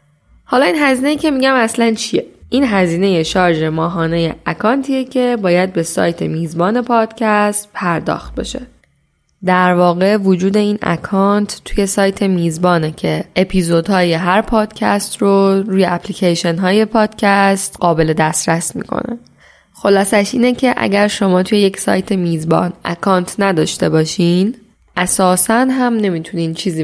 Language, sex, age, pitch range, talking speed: Persian, female, 10-29, 170-215 Hz, 125 wpm